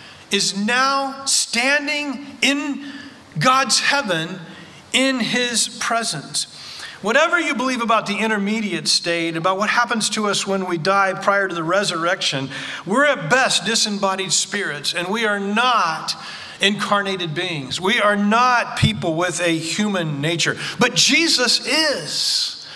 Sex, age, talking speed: male, 40-59, 130 wpm